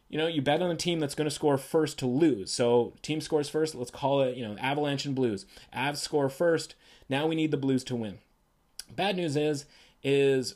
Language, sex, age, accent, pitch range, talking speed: English, male, 30-49, American, 125-160 Hz, 225 wpm